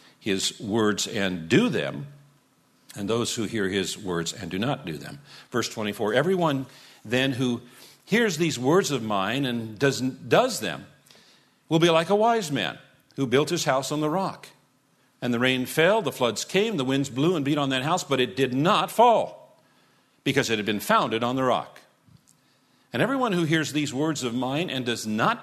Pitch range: 110-155 Hz